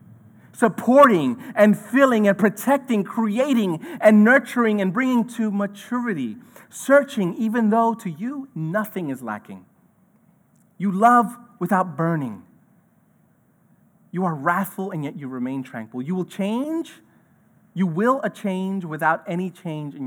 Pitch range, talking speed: 155-210 Hz, 130 wpm